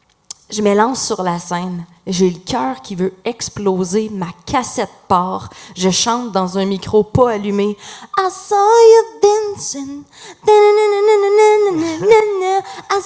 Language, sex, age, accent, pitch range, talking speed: French, female, 30-49, Canadian, 180-255 Hz, 120 wpm